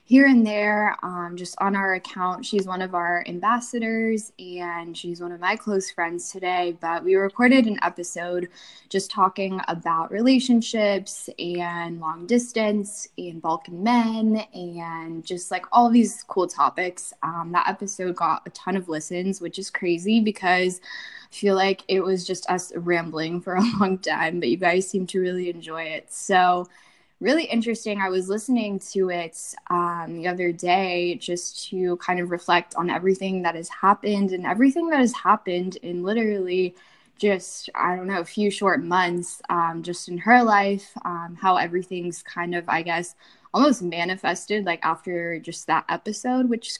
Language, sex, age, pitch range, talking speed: English, female, 10-29, 175-210 Hz, 170 wpm